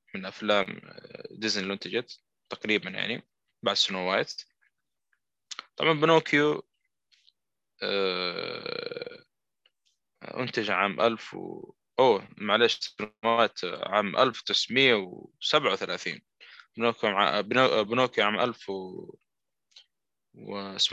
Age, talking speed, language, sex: 20-39, 75 wpm, Arabic, male